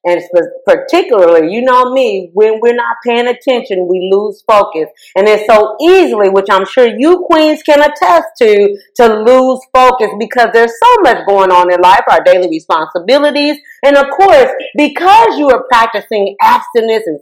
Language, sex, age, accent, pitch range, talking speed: English, female, 40-59, American, 210-300 Hz, 165 wpm